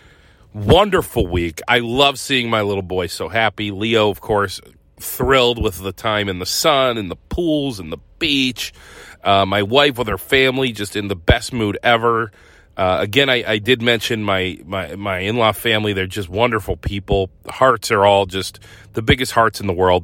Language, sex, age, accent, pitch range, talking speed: English, male, 40-59, American, 95-115 Hz, 190 wpm